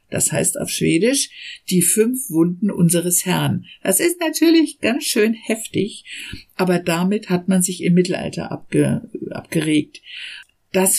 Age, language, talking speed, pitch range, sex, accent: 50-69, German, 135 wpm, 165-200 Hz, female, German